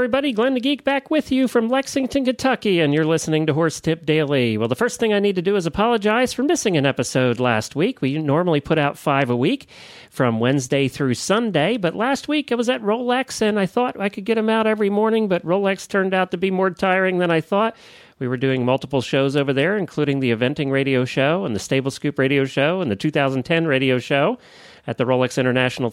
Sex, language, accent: male, English, American